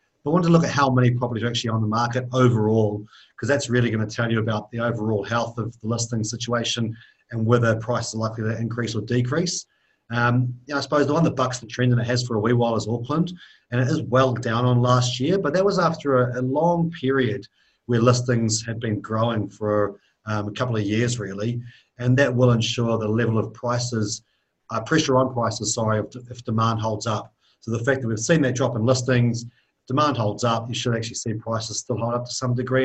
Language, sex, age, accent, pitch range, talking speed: English, male, 40-59, Australian, 110-130 Hz, 235 wpm